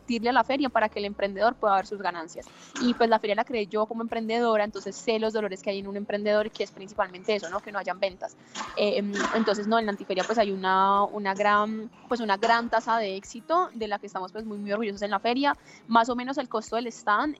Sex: female